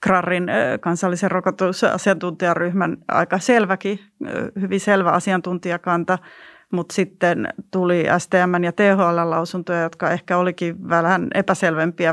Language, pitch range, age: Finnish, 170-195 Hz, 30-49